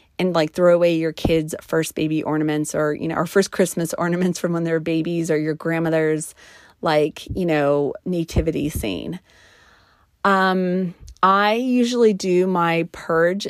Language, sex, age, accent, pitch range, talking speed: English, female, 30-49, American, 160-190 Hz, 150 wpm